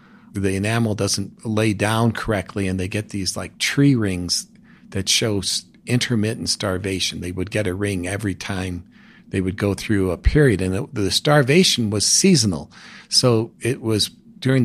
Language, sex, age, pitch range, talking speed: English, male, 50-69, 100-130 Hz, 160 wpm